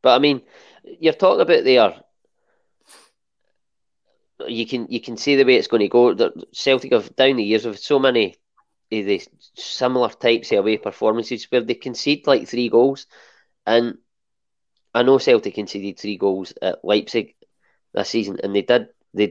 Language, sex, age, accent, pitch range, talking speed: English, male, 20-39, British, 105-135 Hz, 170 wpm